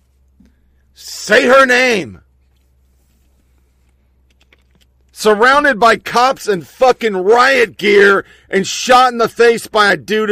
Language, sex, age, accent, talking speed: English, male, 50-69, American, 105 wpm